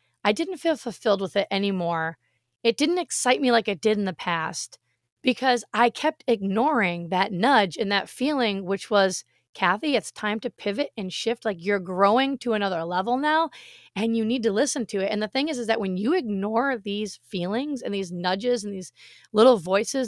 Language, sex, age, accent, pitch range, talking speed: English, female, 30-49, American, 190-250 Hz, 200 wpm